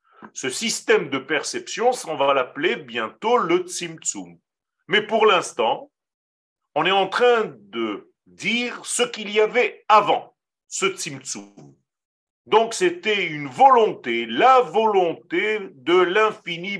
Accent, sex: French, male